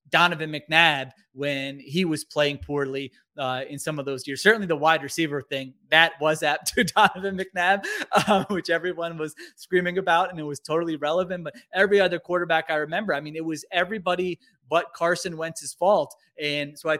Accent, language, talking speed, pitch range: American, English, 185 wpm, 145-175 Hz